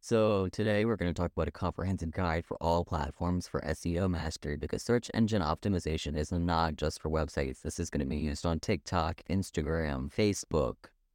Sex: male